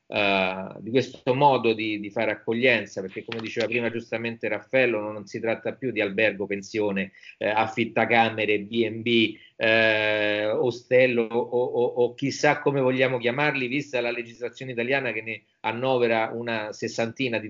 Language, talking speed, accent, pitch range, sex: Italian, 145 wpm, native, 110-135 Hz, male